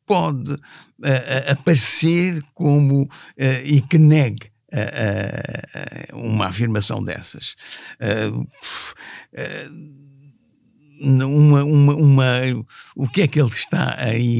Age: 60-79